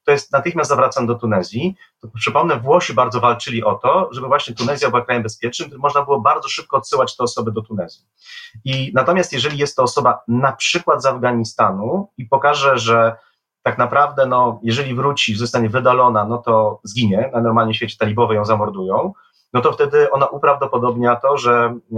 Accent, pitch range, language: native, 110-130 Hz, Polish